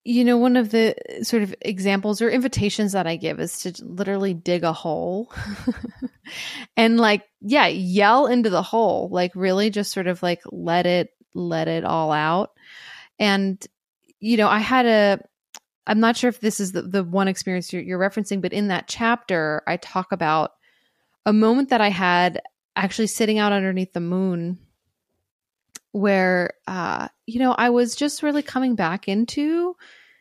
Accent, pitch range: American, 180-235 Hz